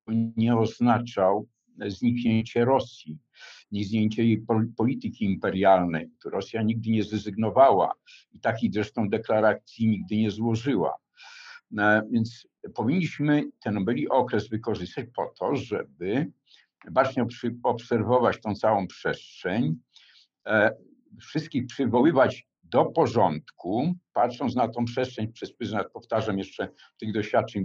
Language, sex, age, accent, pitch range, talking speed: Polish, male, 50-69, native, 105-130 Hz, 105 wpm